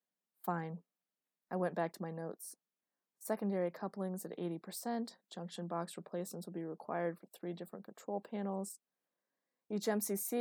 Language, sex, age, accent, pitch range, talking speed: English, female, 20-39, American, 175-220 Hz, 140 wpm